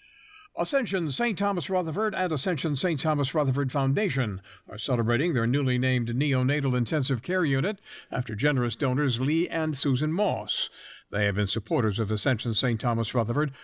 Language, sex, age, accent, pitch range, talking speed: English, male, 60-79, American, 120-160 Hz, 155 wpm